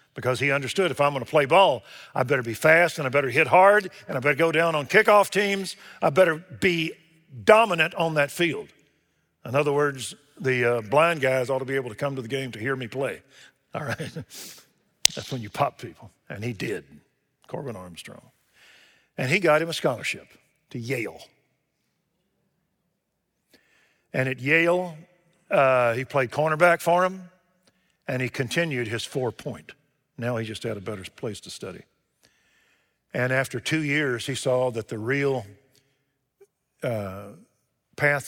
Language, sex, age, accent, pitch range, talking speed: English, male, 50-69, American, 115-155 Hz, 170 wpm